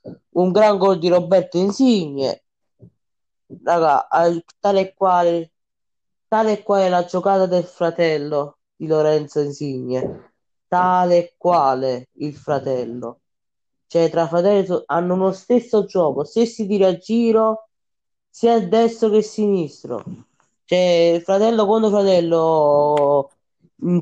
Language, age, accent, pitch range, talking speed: Italian, 20-39, native, 145-190 Hz, 120 wpm